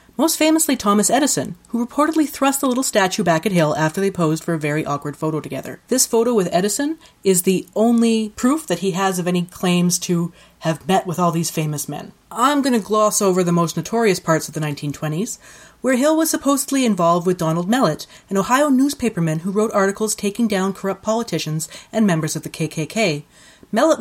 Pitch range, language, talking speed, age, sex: 160-230 Hz, English, 200 wpm, 30-49, female